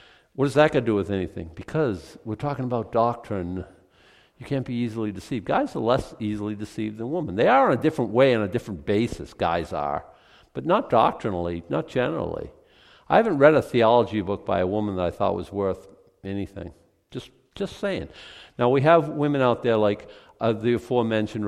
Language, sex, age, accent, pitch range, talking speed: English, male, 50-69, American, 100-125 Hz, 195 wpm